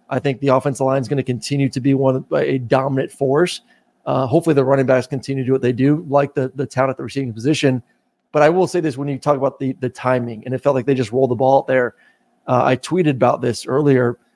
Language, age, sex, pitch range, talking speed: English, 30-49, male, 135-165 Hz, 270 wpm